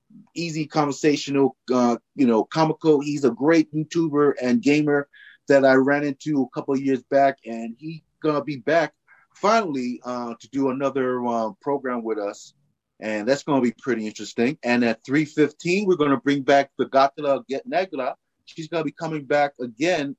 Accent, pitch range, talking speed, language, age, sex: American, 120-150 Hz, 180 wpm, English, 30-49, male